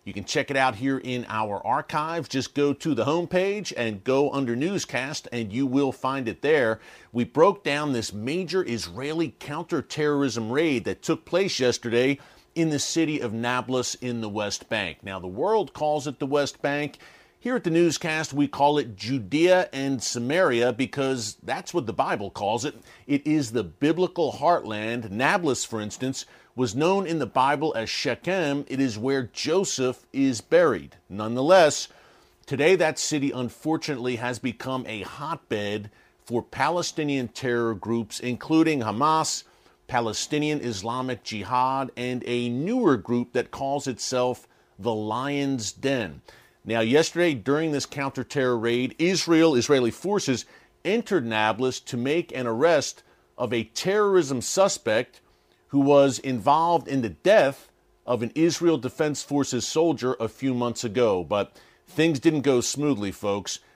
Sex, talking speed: male, 150 wpm